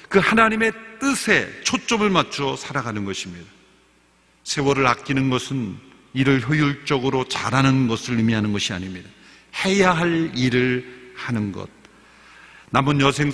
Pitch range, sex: 125-175 Hz, male